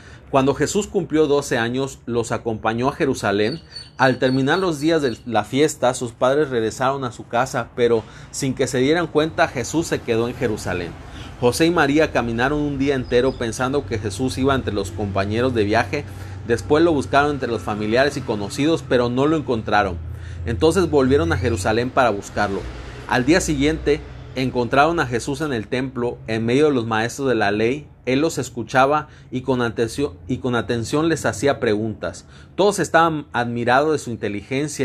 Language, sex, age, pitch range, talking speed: Spanish, male, 40-59, 110-145 Hz, 175 wpm